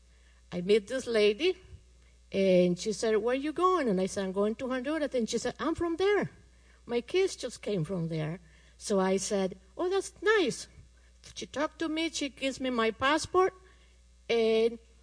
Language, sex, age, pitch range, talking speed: English, female, 50-69, 170-265 Hz, 185 wpm